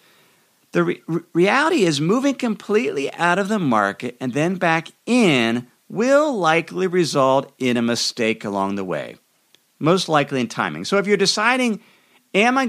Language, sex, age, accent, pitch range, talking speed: English, male, 50-69, American, 130-200 Hz, 155 wpm